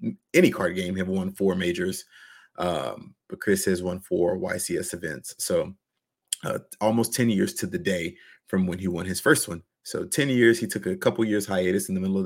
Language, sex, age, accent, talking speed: English, male, 30-49, American, 210 wpm